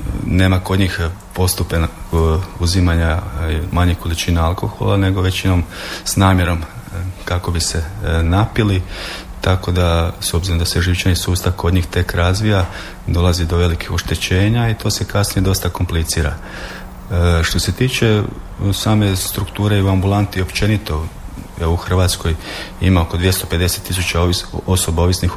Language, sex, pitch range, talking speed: Croatian, male, 85-95 Hz, 130 wpm